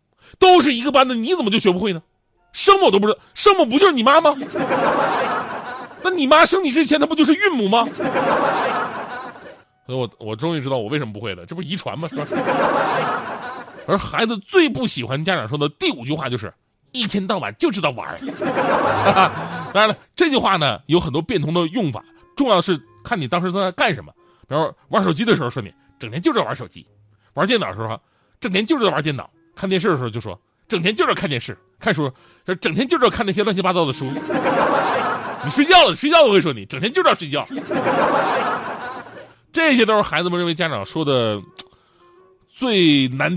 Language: Chinese